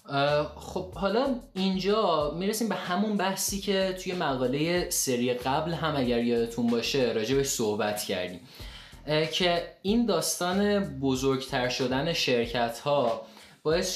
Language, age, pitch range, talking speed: Persian, 20-39, 125-180 Hz, 115 wpm